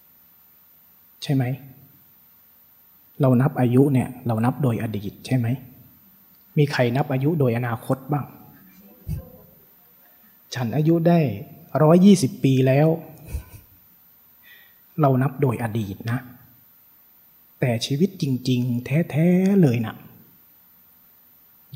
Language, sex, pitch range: Thai, male, 120-155 Hz